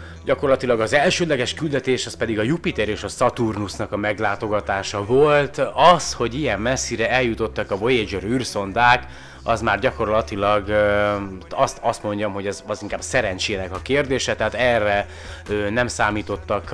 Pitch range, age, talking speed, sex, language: 100-120 Hz, 30-49, 140 wpm, male, Hungarian